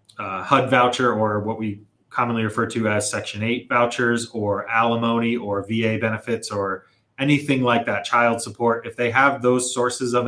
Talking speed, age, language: 175 wpm, 30-49, English